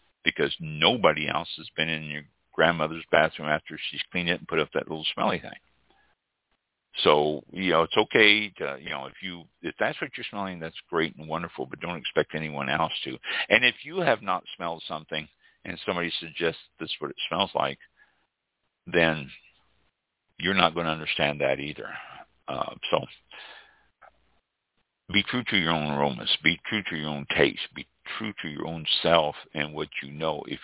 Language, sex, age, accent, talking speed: English, male, 60-79, American, 180 wpm